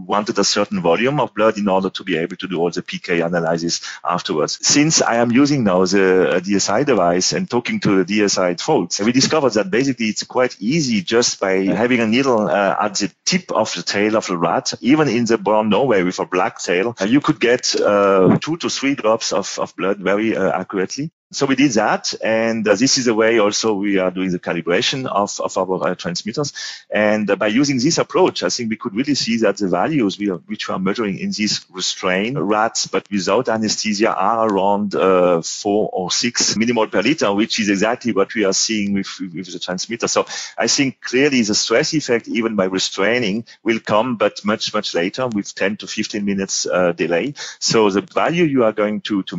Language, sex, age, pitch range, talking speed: English, male, 40-59, 95-115 Hz, 215 wpm